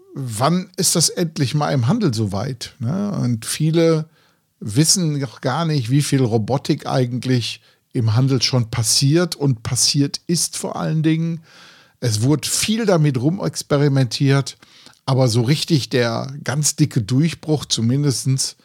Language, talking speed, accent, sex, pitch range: German, 130 wpm, German, male, 120-155 Hz